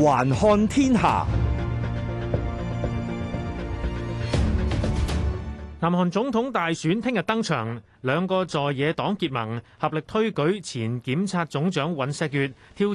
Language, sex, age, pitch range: Chinese, male, 30-49, 135-185 Hz